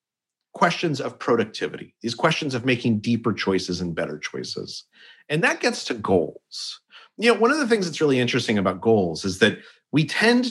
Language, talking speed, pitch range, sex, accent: English, 185 wpm, 110-160 Hz, male, American